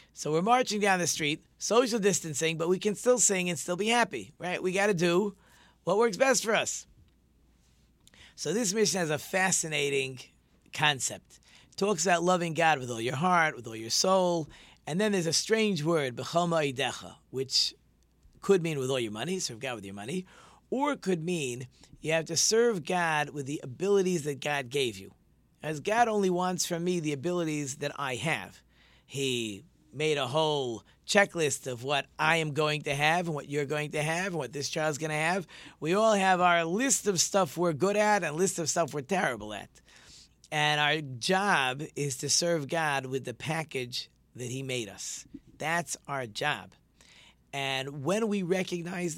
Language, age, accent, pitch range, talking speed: English, 40-59, American, 135-185 Hz, 190 wpm